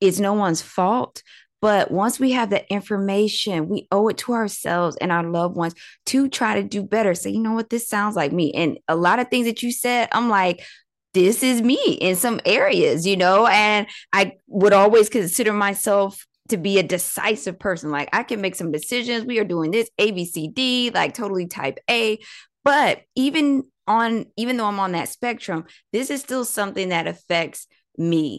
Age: 20-39